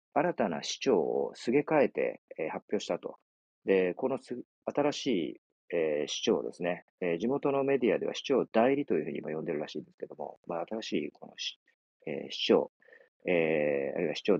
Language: Japanese